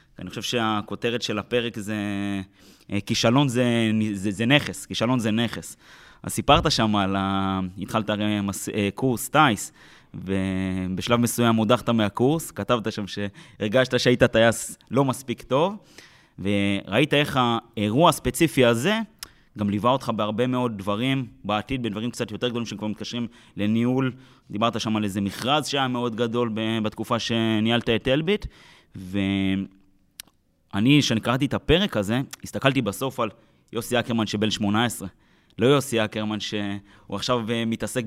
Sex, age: male, 20-39